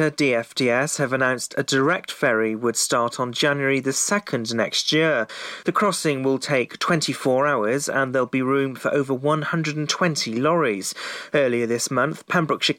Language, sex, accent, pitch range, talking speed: English, male, British, 130-155 Hz, 150 wpm